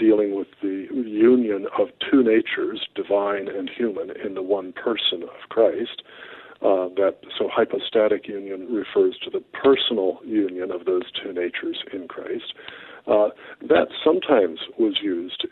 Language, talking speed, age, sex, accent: English, 145 wpm, 50-69, male, American